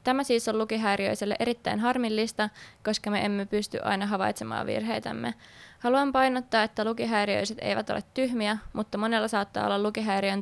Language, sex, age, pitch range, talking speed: Finnish, female, 20-39, 200-225 Hz, 145 wpm